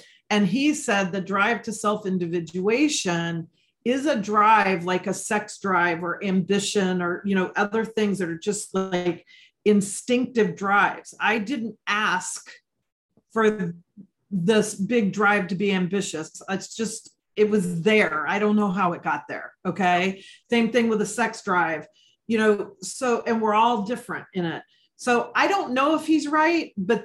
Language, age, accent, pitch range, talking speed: English, 40-59, American, 195-245 Hz, 160 wpm